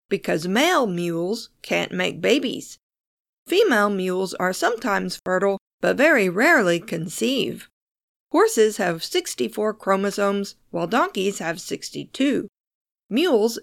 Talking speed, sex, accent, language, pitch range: 105 wpm, female, American, English, 185-245 Hz